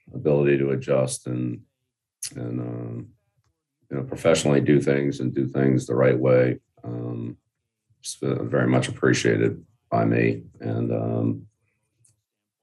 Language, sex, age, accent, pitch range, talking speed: English, male, 40-59, American, 65-105 Hz, 130 wpm